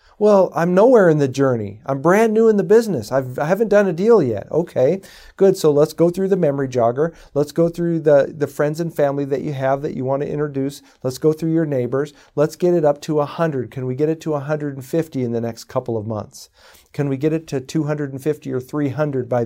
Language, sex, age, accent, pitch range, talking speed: English, male, 40-59, American, 125-160 Hz, 235 wpm